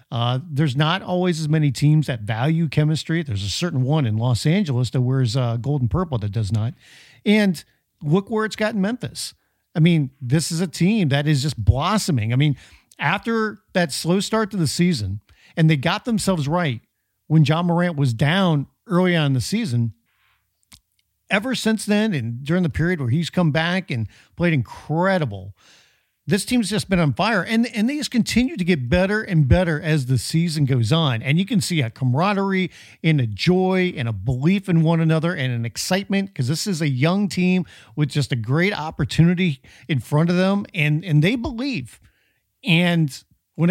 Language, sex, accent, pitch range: English, male, American, 130-190 Hz